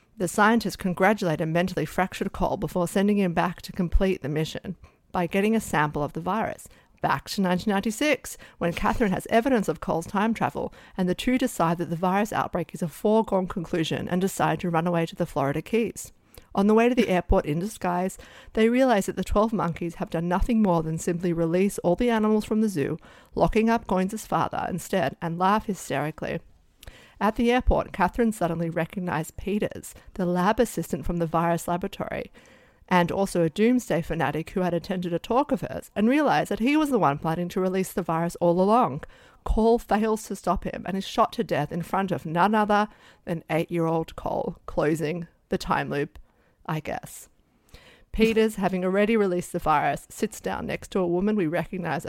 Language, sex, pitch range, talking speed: English, female, 170-215 Hz, 190 wpm